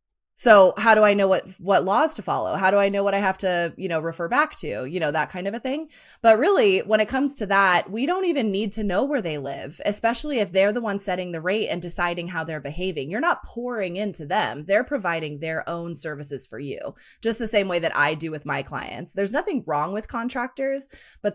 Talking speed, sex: 245 wpm, female